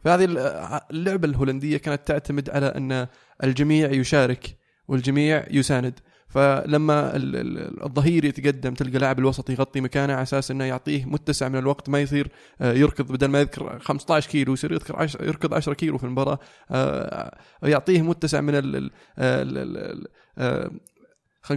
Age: 20-39